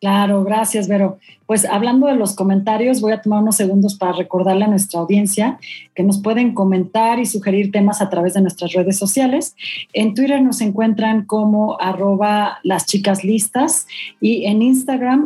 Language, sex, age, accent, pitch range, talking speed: Spanish, female, 40-59, Mexican, 195-230 Hz, 165 wpm